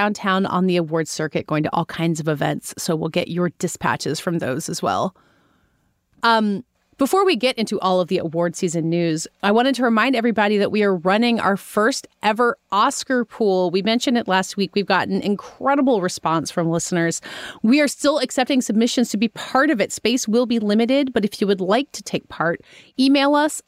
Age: 30-49